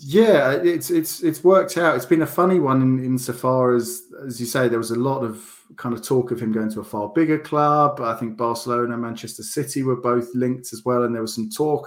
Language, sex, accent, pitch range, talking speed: English, male, British, 110-125 Hz, 250 wpm